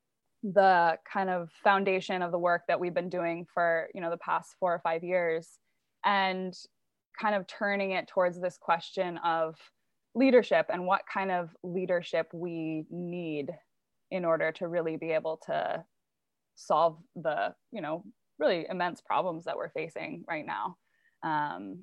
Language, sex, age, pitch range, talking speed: English, female, 20-39, 165-195 Hz, 155 wpm